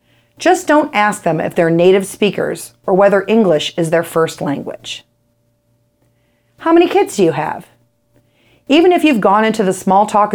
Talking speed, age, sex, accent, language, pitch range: 170 wpm, 40-59, female, American, English, 150-225 Hz